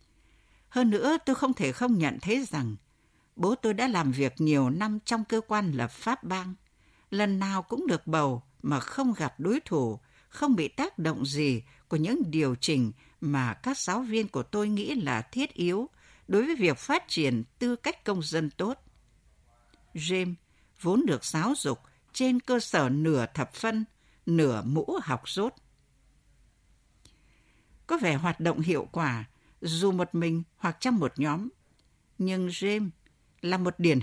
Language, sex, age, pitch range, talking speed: Vietnamese, female, 60-79, 140-220 Hz, 165 wpm